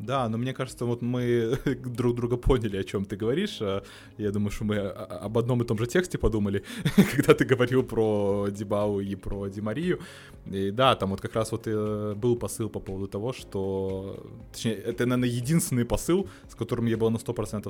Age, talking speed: 20-39, 185 wpm